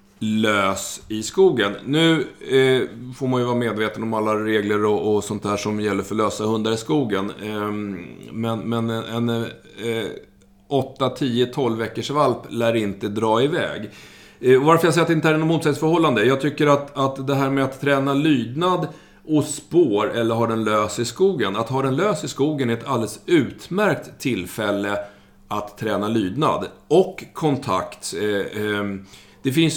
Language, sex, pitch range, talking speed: Swedish, male, 105-135 Hz, 175 wpm